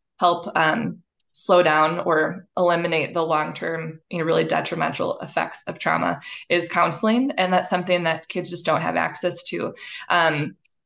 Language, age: English, 20-39